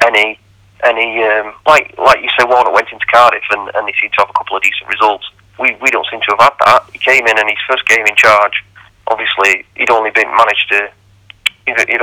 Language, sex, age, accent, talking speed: English, male, 40-59, British, 230 wpm